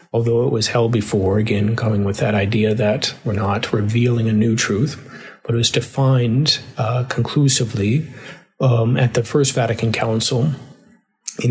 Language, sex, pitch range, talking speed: English, male, 115-140 Hz, 155 wpm